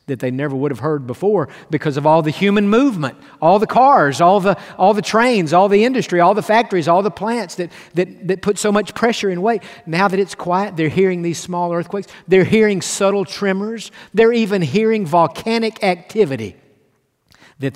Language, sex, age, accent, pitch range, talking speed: English, male, 50-69, American, 150-200 Hz, 195 wpm